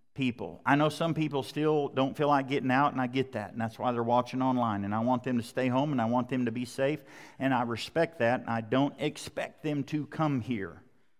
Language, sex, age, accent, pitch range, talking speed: English, male, 50-69, American, 125-155 Hz, 245 wpm